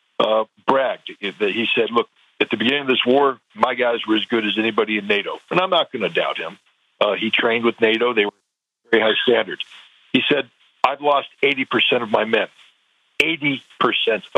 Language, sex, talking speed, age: English, male, 195 wpm, 60-79